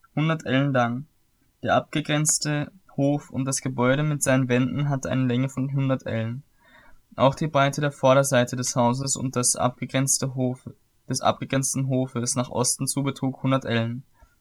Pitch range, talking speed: 125-140 Hz, 160 wpm